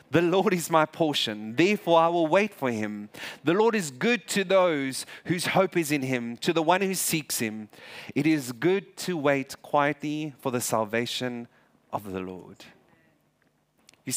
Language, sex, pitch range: English, male, 120-170 Hz